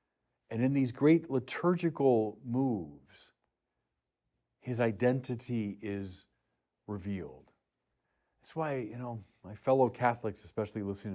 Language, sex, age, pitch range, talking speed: English, male, 50-69, 115-170 Hz, 100 wpm